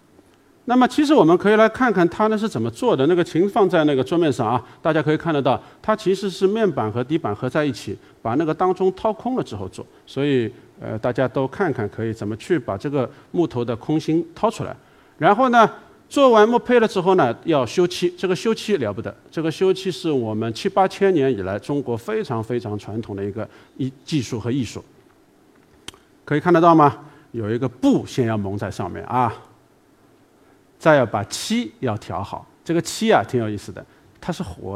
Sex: male